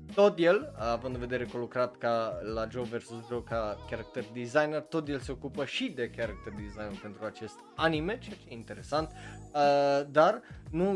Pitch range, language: 115-155 Hz, Romanian